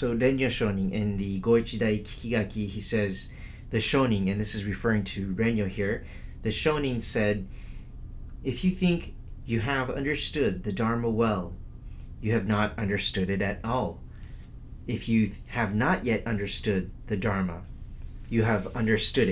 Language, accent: English, American